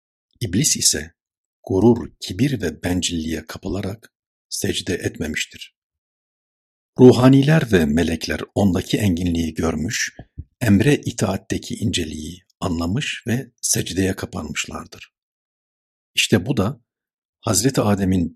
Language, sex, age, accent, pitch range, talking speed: Turkish, male, 60-79, native, 85-115 Hz, 90 wpm